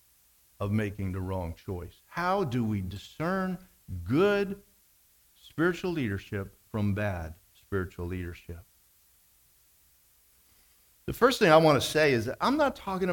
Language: English